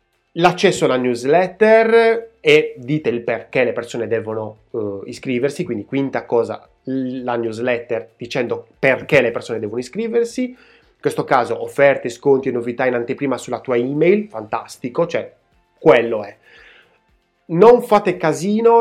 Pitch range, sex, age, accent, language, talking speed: 130-195 Hz, male, 30-49, native, Italian, 135 wpm